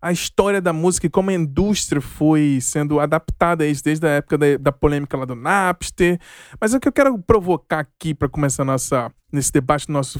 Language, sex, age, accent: Portuguese, male, 20-39, Brazilian